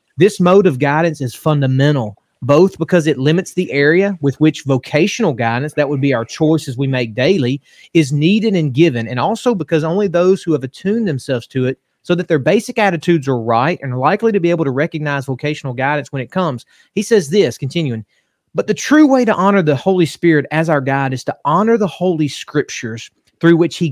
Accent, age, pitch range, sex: American, 30-49, 135-175 Hz, male